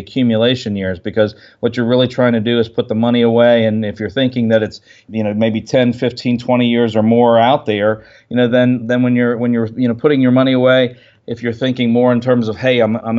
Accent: American